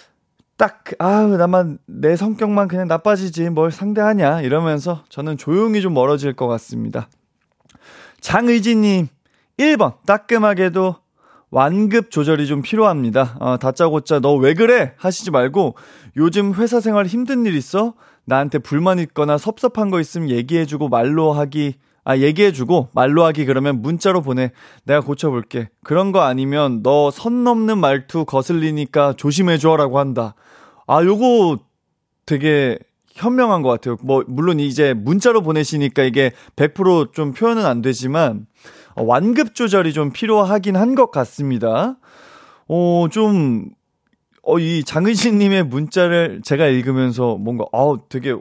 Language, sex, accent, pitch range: Korean, male, native, 135-195 Hz